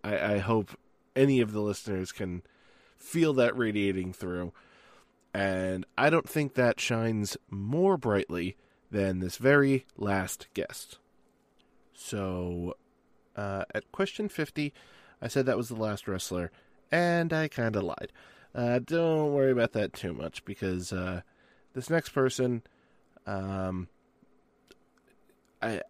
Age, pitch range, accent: 20-39, 95-135 Hz, American